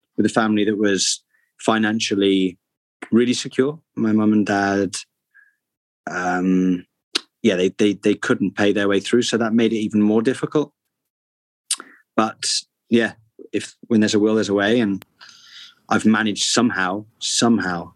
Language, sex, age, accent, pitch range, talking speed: English, male, 20-39, British, 100-115 Hz, 145 wpm